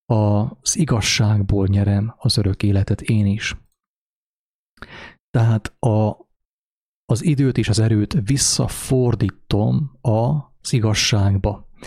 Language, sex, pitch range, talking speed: English, male, 105-125 Hz, 90 wpm